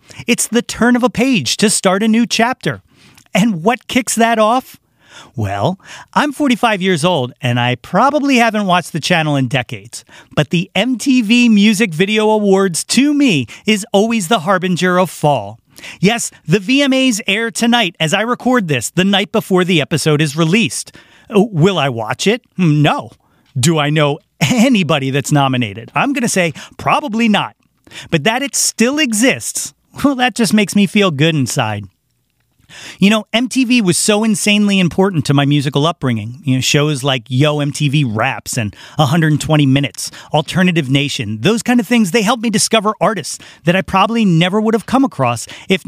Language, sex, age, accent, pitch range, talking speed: English, male, 40-59, American, 145-225 Hz, 170 wpm